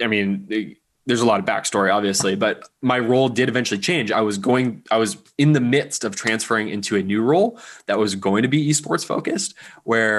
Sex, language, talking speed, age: male, English, 210 wpm, 20-39